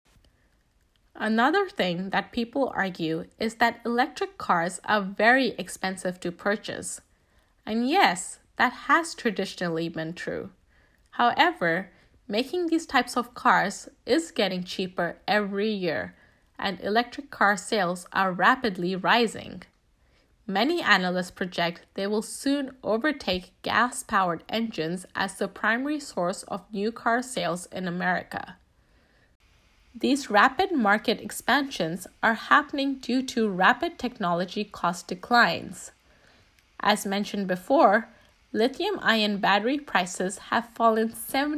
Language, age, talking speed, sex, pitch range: English, 10-29, 115 wpm, female, 185-245 Hz